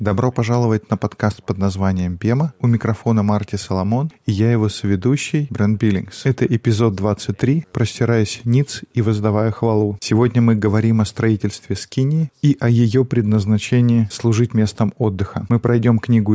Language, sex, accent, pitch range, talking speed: Russian, male, native, 105-120 Hz, 150 wpm